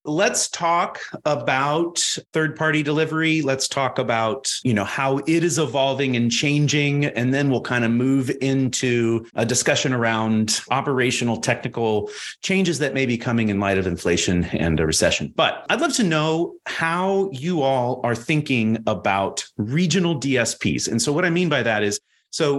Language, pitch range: English, 110-155 Hz